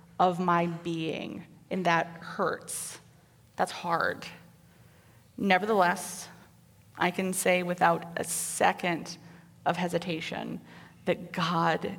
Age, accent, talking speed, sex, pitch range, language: 30-49, American, 95 wpm, female, 170-200 Hz, English